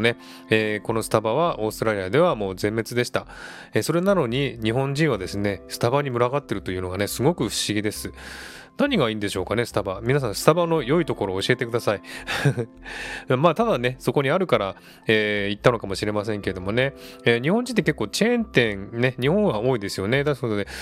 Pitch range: 105-145 Hz